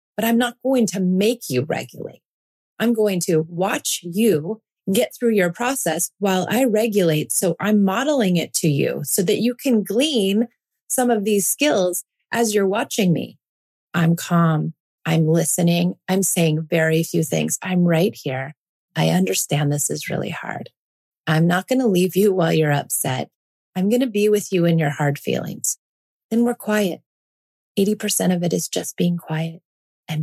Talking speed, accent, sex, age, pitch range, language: 175 wpm, American, female, 30-49, 160-220 Hz, English